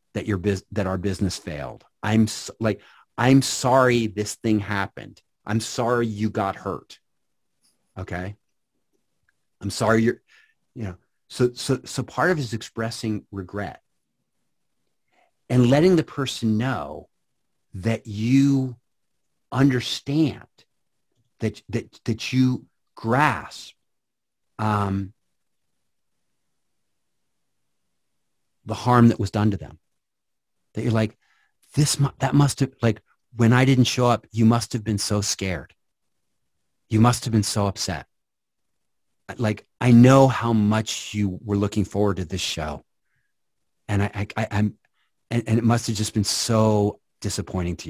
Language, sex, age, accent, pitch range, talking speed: English, male, 40-59, American, 100-125 Hz, 135 wpm